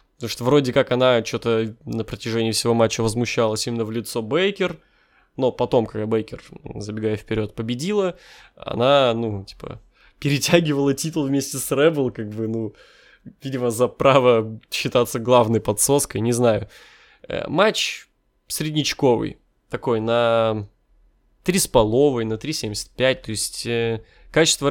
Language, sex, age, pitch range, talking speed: Russian, male, 20-39, 110-140 Hz, 125 wpm